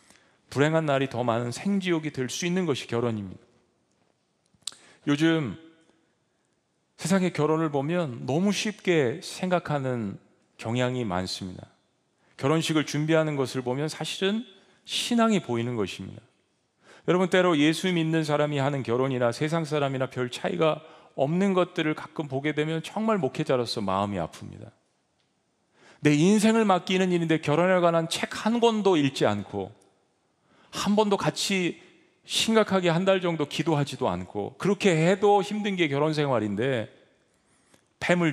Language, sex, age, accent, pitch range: Korean, male, 40-59, native, 135-185 Hz